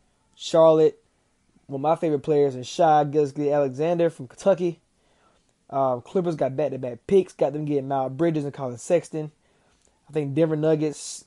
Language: English